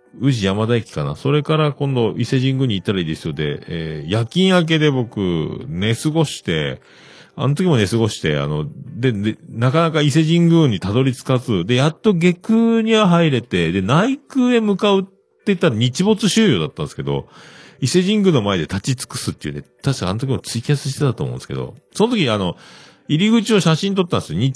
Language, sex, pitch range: Japanese, male, 105-160 Hz